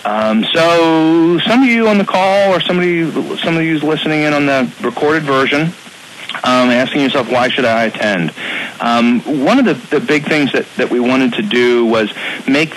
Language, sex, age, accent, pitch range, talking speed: English, male, 40-59, American, 105-135 Hz, 190 wpm